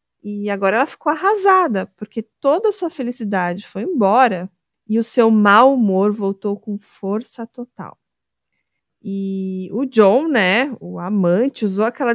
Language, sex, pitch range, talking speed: Portuguese, female, 195-260 Hz, 145 wpm